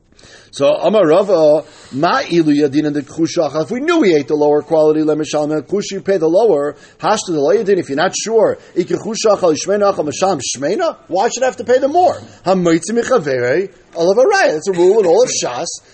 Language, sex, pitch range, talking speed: English, male, 140-235 Hz, 135 wpm